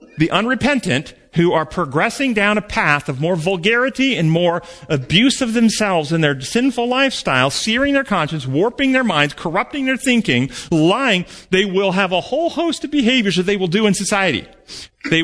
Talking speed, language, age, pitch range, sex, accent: 175 wpm, English, 40-59, 150-230 Hz, male, American